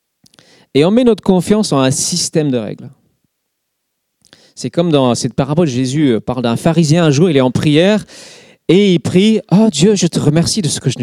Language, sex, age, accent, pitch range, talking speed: French, male, 40-59, French, 130-185 Hz, 210 wpm